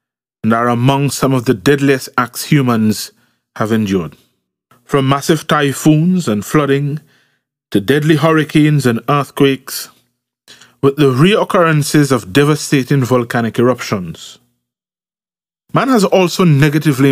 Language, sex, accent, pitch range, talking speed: English, male, Nigerian, 115-155 Hz, 110 wpm